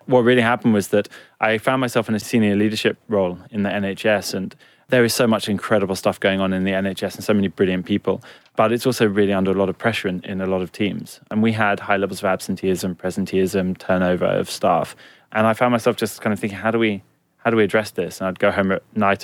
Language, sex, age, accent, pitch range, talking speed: English, male, 20-39, British, 95-110 Hz, 245 wpm